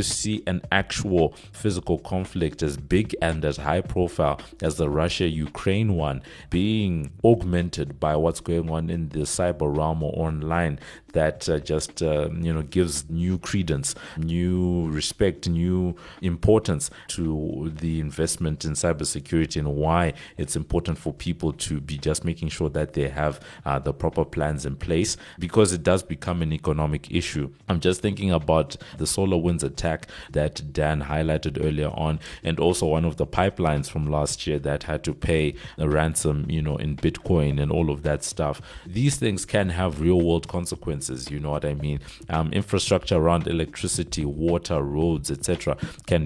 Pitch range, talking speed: 75-90 Hz, 170 wpm